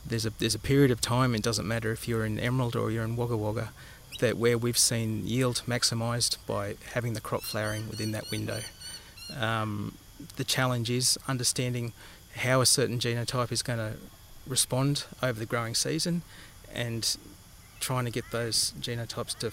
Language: English